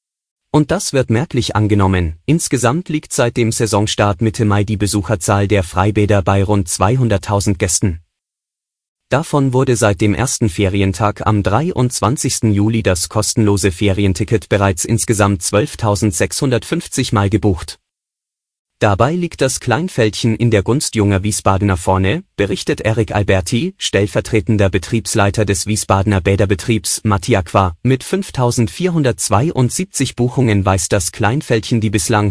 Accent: German